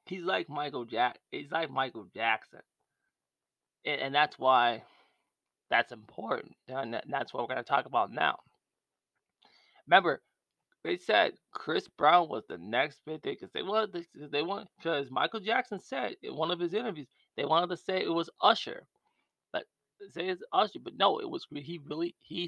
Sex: male